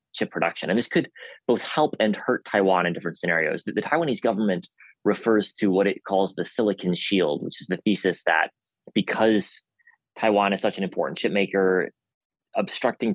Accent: American